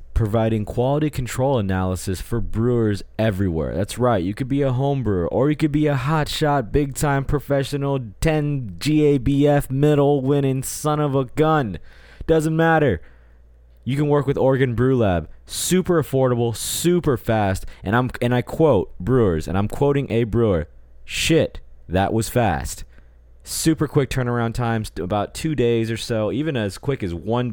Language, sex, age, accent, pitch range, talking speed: English, male, 20-39, American, 95-140 Hz, 165 wpm